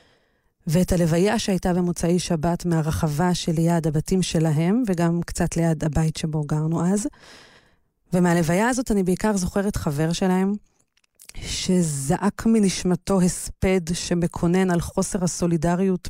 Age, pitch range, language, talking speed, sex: 30-49, 165-195 Hz, Hebrew, 110 wpm, female